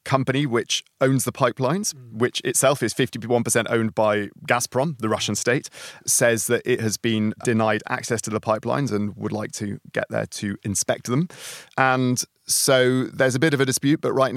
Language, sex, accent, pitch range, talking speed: English, male, British, 100-125 Hz, 190 wpm